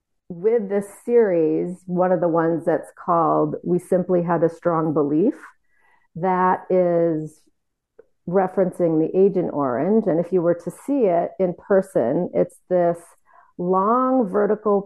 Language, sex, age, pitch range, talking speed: English, female, 40-59, 165-200 Hz, 135 wpm